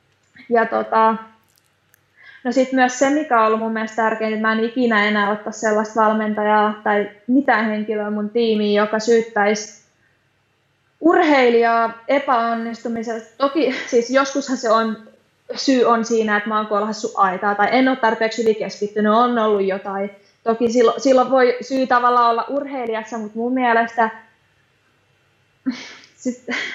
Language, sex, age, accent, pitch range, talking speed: Finnish, female, 20-39, native, 215-255 Hz, 135 wpm